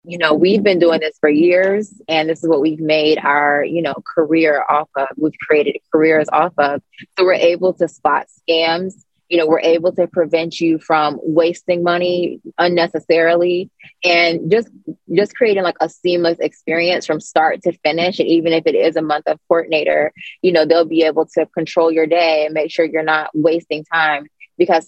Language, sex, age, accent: English, female, 20-39, American